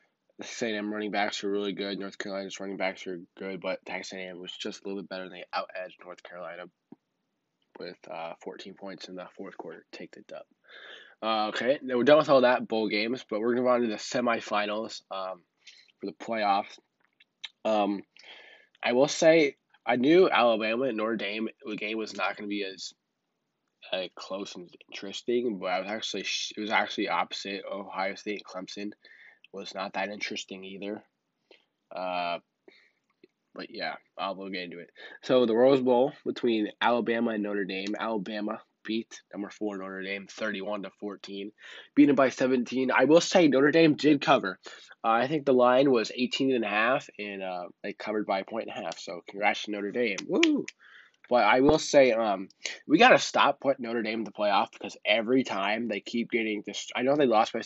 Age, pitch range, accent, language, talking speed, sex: 20-39, 95-120 Hz, American, English, 200 wpm, male